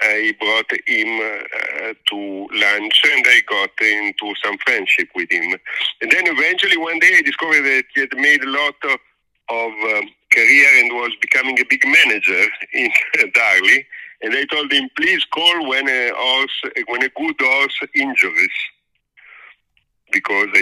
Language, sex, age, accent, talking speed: English, male, 50-69, Italian, 155 wpm